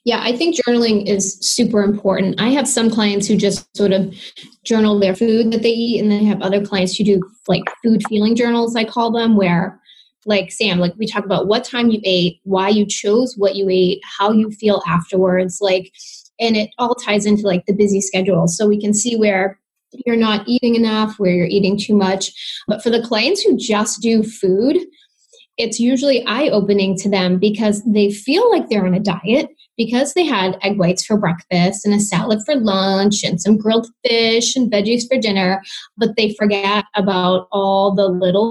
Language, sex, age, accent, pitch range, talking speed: English, female, 10-29, American, 195-230 Hz, 205 wpm